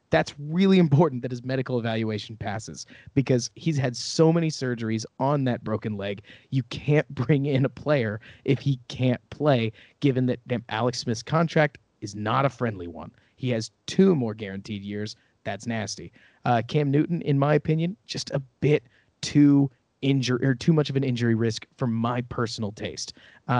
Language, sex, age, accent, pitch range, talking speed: English, male, 30-49, American, 115-140 Hz, 175 wpm